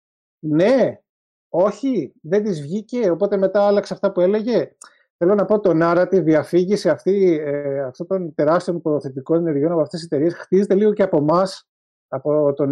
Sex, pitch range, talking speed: male, 145-185 Hz, 165 wpm